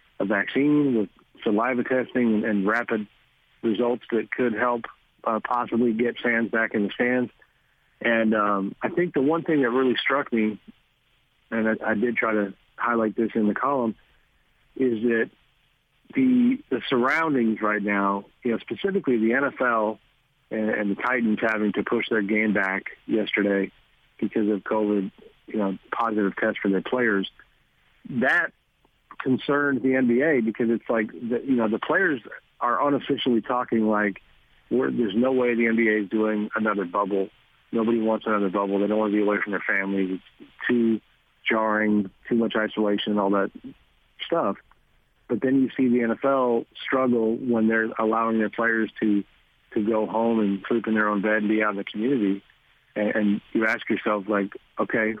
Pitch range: 105-120 Hz